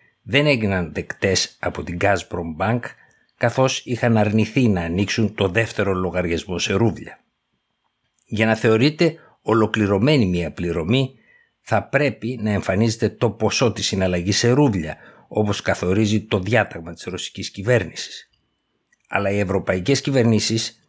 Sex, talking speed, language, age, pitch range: male, 125 wpm, Greek, 60-79, 95-120 Hz